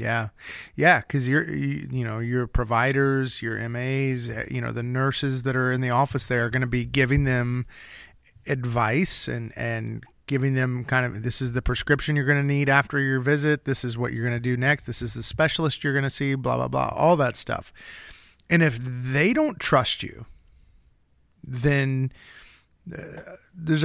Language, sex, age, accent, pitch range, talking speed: English, male, 30-49, American, 120-140 Hz, 185 wpm